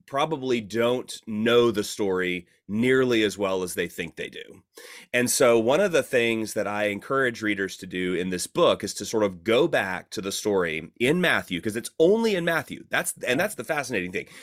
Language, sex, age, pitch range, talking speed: English, male, 30-49, 95-125 Hz, 210 wpm